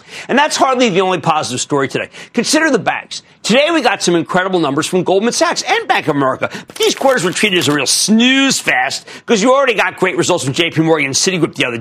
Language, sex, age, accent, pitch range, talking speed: English, male, 50-69, American, 175-270 Hz, 240 wpm